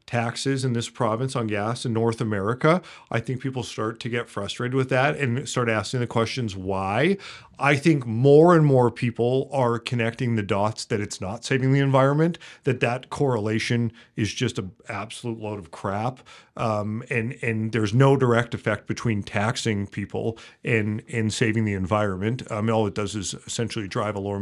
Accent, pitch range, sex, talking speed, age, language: American, 110-135 Hz, male, 185 wpm, 40-59, English